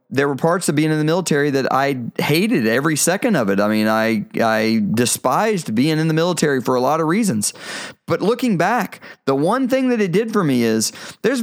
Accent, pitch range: American, 135-190 Hz